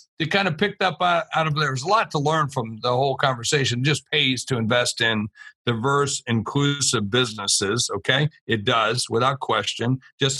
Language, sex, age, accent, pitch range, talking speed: English, male, 50-69, American, 125-150 Hz, 180 wpm